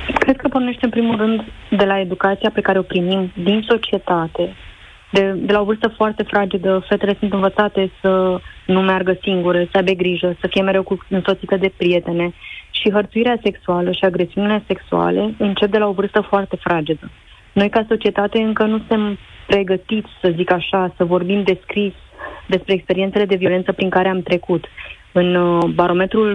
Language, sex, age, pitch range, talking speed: Romanian, female, 30-49, 180-210 Hz, 170 wpm